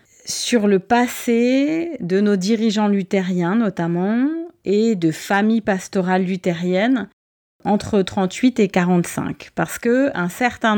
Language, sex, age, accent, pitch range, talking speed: French, female, 30-49, French, 185-245 Hz, 115 wpm